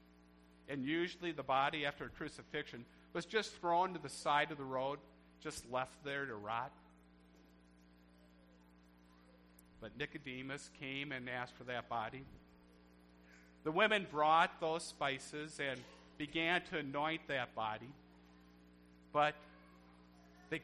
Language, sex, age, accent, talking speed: English, male, 50-69, American, 120 wpm